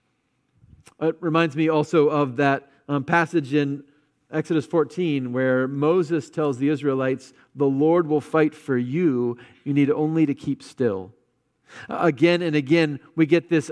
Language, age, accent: English, 40-59, American